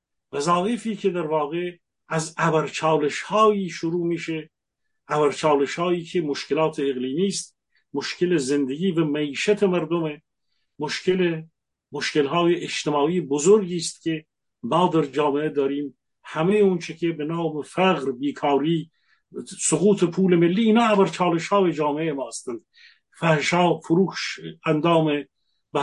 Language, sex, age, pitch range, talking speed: English, male, 50-69, 150-190 Hz, 110 wpm